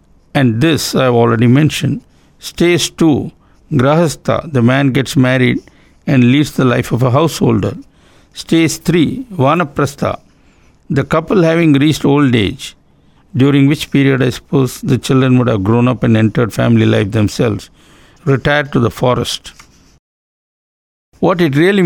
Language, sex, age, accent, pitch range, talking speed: English, male, 60-79, Indian, 120-155 Hz, 145 wpm